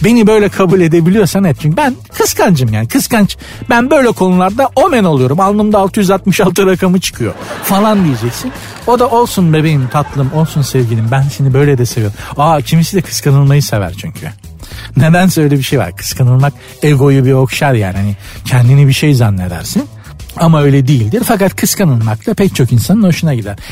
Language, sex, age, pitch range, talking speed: Turkish, male, 60-79, 125-185 Hz, 165 wpm